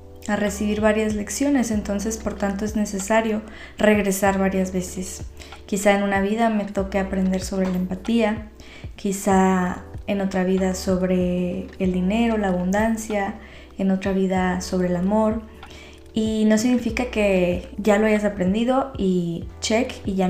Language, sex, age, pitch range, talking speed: Spanish, female, 20-39, 190-210 Hz, 145 wpm